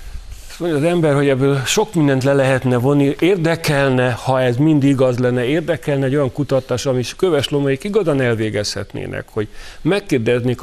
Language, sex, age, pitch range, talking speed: Hungarian, male, 50-69, 110-135 Hz, 145 wpm